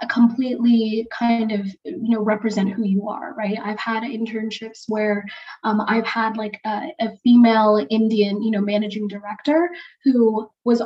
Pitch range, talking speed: 215-250 Hz, 155 wpm